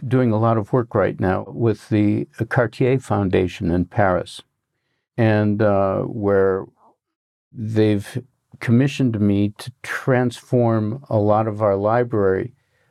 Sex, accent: male, American